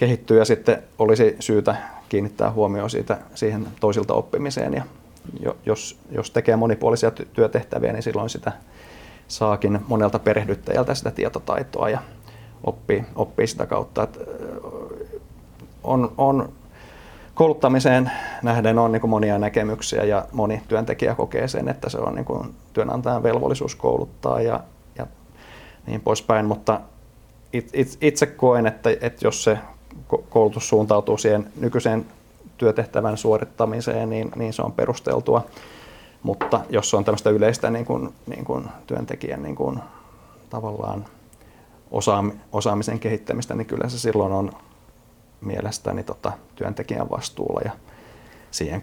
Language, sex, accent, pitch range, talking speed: Finnish, male, native, 105-120 Hz, 110 wpm